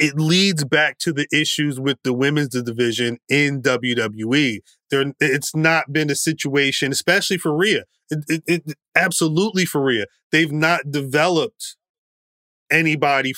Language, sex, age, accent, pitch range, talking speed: English, male, 30-49, American, 130-165 Hz, 140 wpm